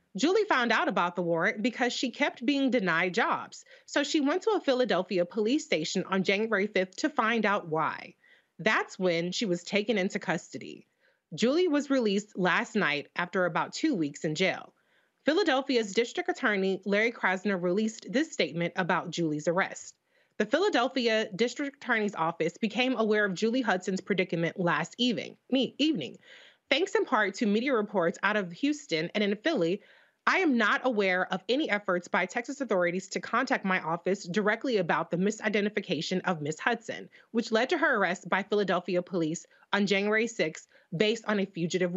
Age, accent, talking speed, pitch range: 30-49, American, 170 wpm, 180-250 Hz